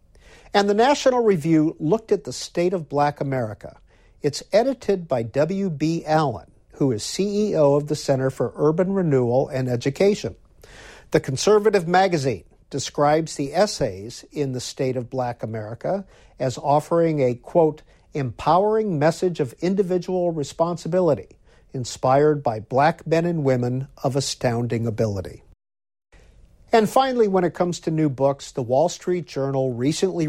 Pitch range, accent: 125-175 Hz, American